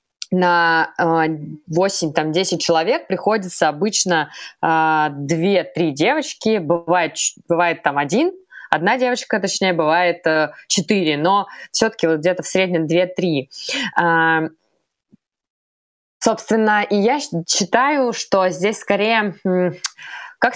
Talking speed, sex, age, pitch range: 100 wpm, female, 20-39, 165-210 Hz